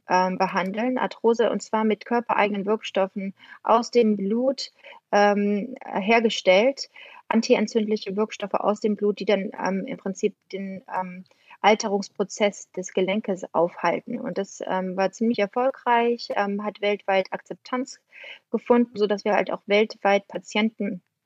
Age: 30-49